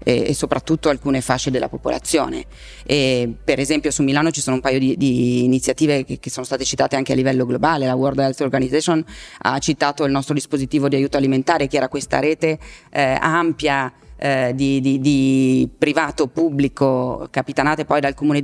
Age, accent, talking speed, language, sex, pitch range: 30-49, native, 175 wpm, Italian, female, 135-155 Hz